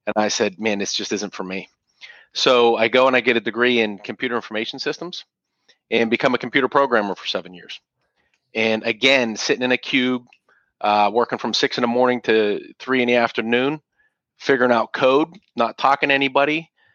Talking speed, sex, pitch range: 190 wpm, male, 105-125 Hz